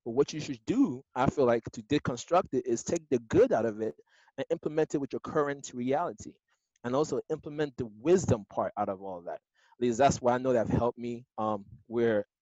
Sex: male